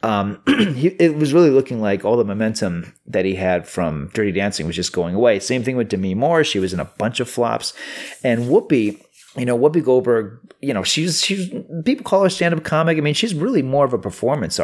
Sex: male